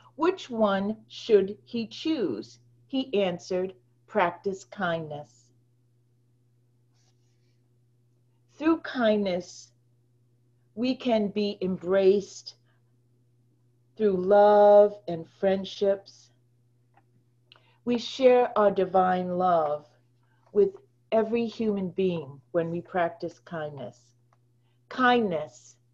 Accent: American